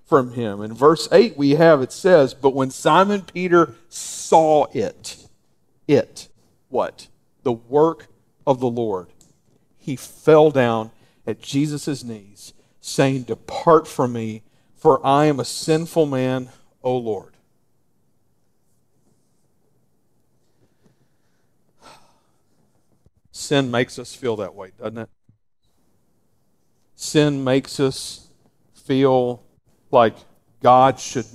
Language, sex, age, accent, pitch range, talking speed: English, male, 50-69, American, 120-155 Hz, 105 wpm